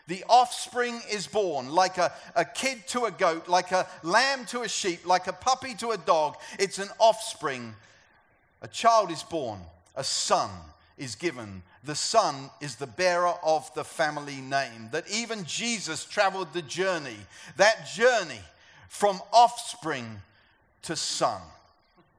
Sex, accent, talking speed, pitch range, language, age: male, British, 150 wpm, 150-220 Hz, English, 40-59